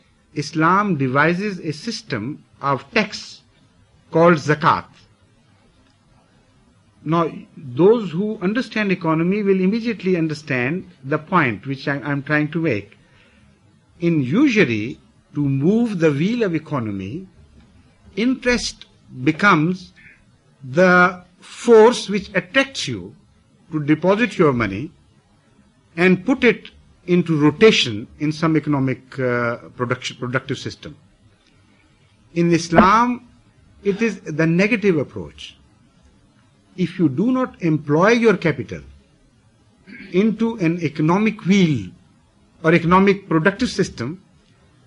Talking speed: 105 wpm